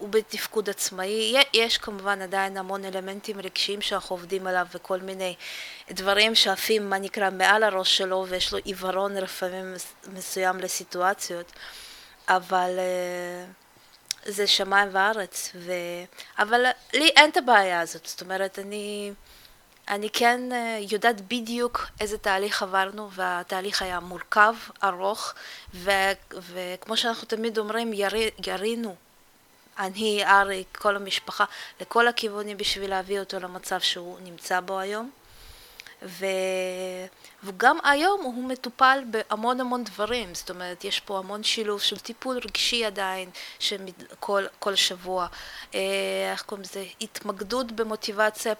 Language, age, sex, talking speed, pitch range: Hebrew, 20-39, female, 120 wpm, 185-220 Hz